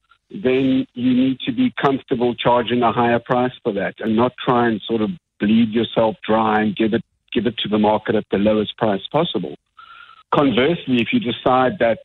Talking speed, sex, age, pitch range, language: 195 wpm, male, 50-69, 110-125 Hz, English